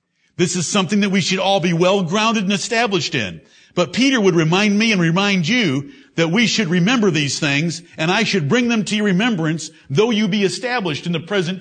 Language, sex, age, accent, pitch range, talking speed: English, male, 60-79, American, 160-225 Hz, 215 wpm